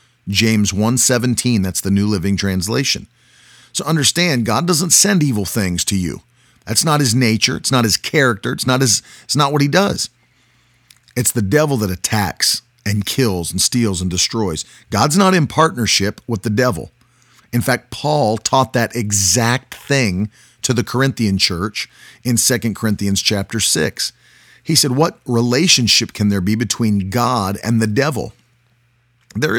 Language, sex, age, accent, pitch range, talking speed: English, male, 40-59, American, 105-125 Hz, 160 wpm